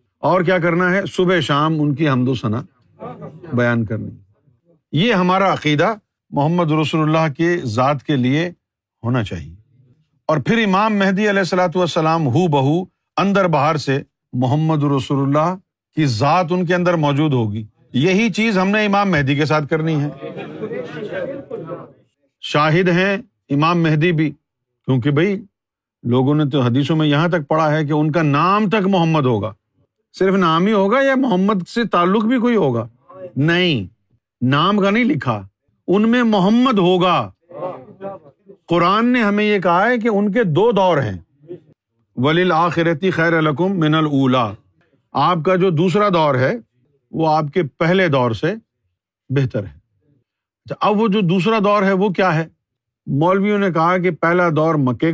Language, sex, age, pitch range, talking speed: Urdu, male, 50-69, 135-185 Hz, 160 wpm